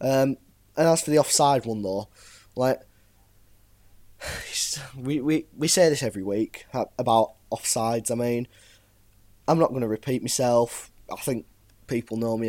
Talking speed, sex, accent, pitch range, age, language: 145 wpm, male, British, 105-150 Hz, 10-29, English